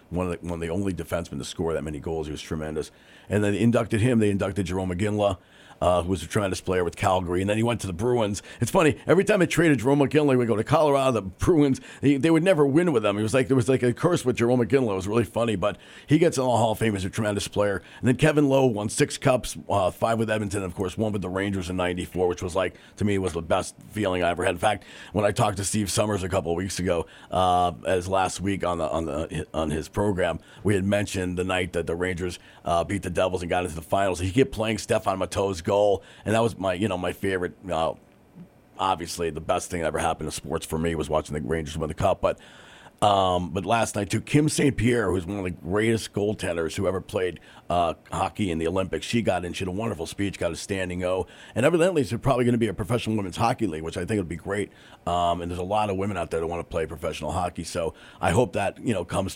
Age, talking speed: 40-59, 270 wpm